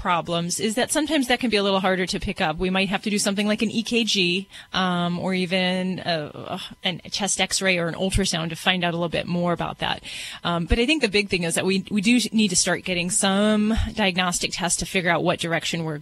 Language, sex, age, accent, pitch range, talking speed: English, female, 30-49, American, 175-210 Hz, 245 wpm